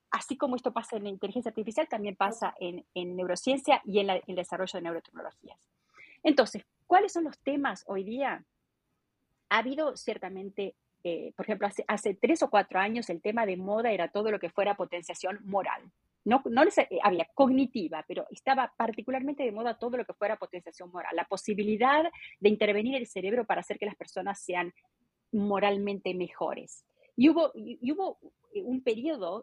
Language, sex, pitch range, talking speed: Spanish, female, 190-255 Hz, 180 wpm